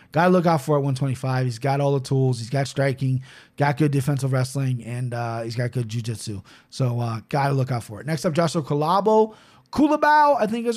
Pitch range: 130-170 Hz